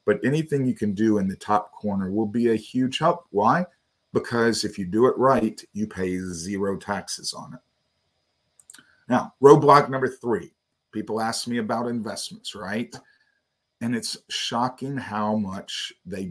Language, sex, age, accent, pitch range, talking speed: English, male, 50-69, American, 105-140 Hz, 160 wpm